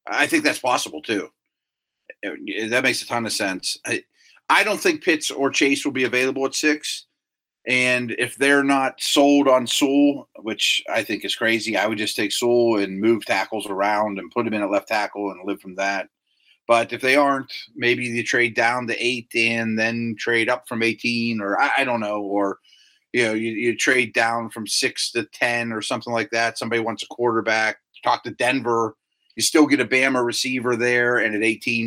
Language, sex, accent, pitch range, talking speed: English, male, American, 115-140 Hz, 205 wpm